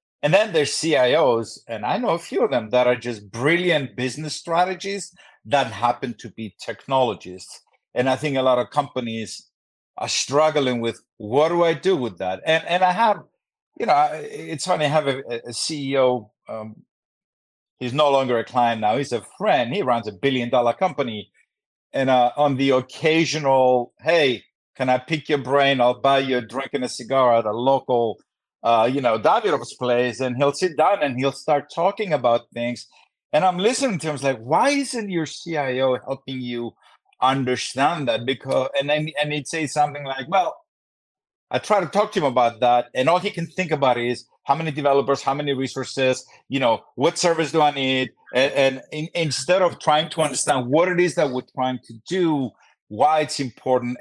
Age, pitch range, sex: 50-69, 125-155 Hz, male